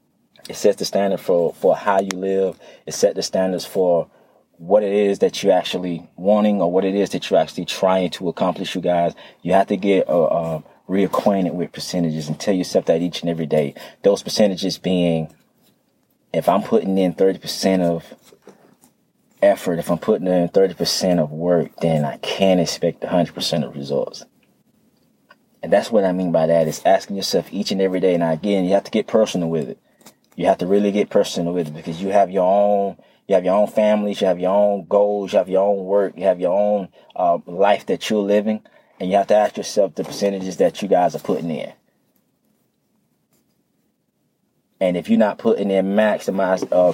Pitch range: 85-100 Hz